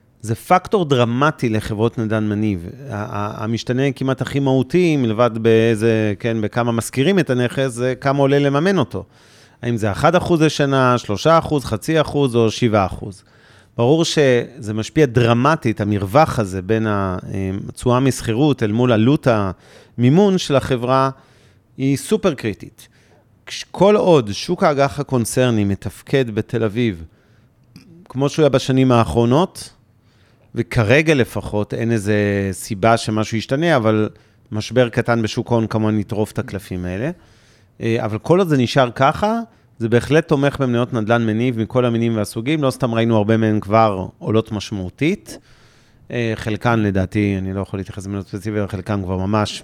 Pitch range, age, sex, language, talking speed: 110-135 Hz, 40-59, male, Hebrew, 140 wpm